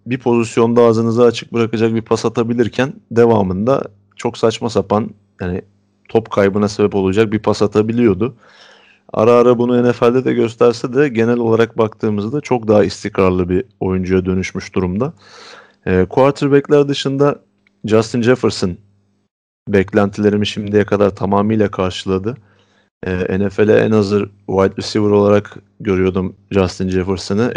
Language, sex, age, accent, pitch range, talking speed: Turkish, male, 30-49, native, 95-110 Hz, 125 wpm